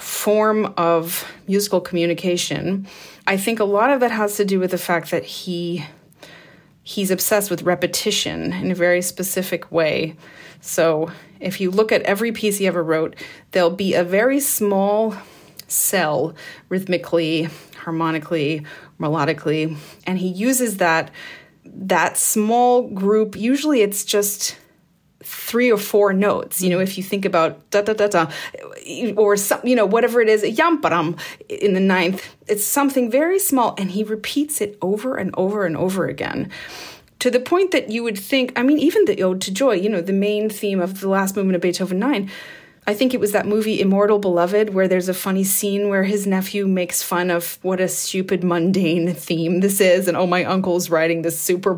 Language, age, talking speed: English, 30-49, 180 wpm